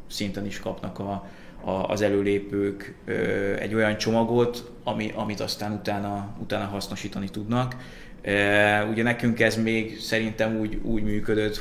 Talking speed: 140 wpm